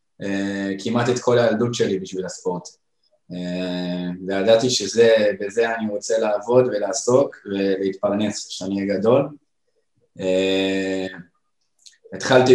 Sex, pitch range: male, 100-125 Hz